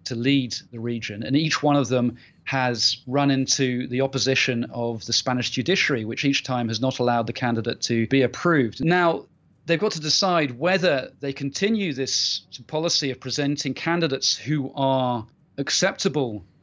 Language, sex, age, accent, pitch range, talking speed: English, male, 40-59, British, 125-145 Hz, 160 wpm